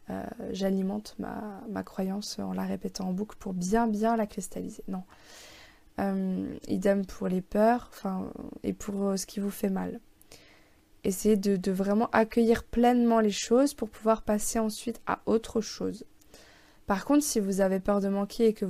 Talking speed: 175 wpm